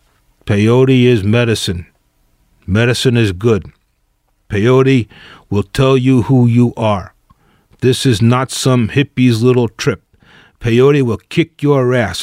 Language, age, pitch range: English, 40-59, 110-135 Hz